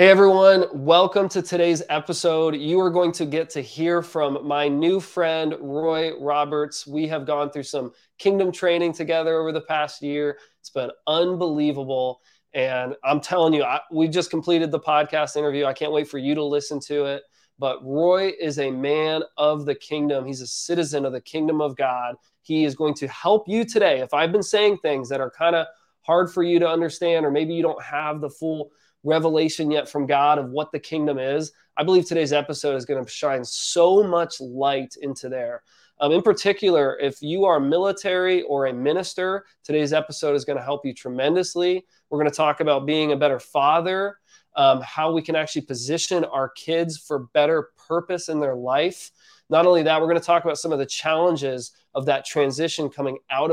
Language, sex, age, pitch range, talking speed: English, male, 20-39, 145-170 Hz, 200 wpm